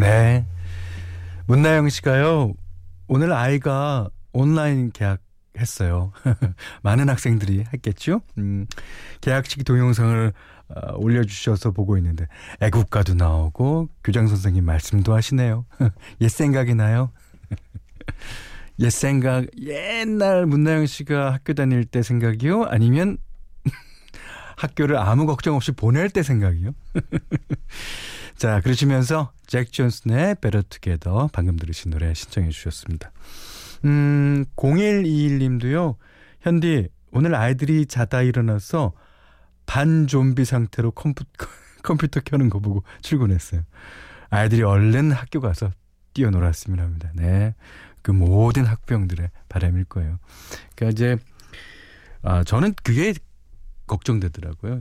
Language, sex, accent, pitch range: Korean, male, native, 95-140 Hz